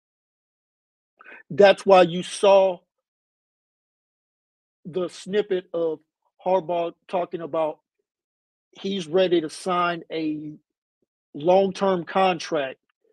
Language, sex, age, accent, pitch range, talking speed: English, male, 50-69, American, 160-195 Hz, 80 wpm